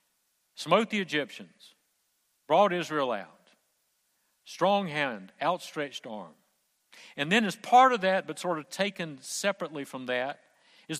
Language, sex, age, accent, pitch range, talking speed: English, male, 60-79, American, 135-190 Hz, 130 wpm